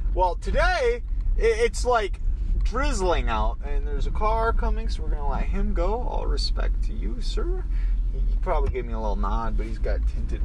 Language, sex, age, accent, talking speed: English, male, 20-39, American, 190 wpm